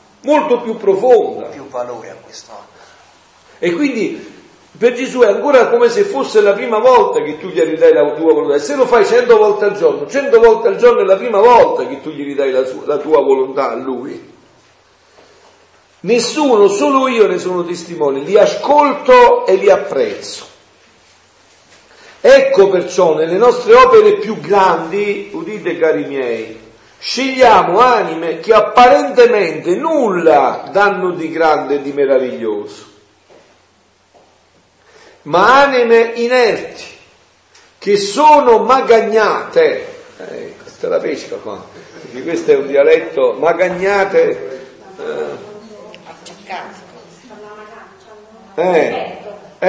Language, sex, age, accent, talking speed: Italian, male, 50-69, native, 120 wpm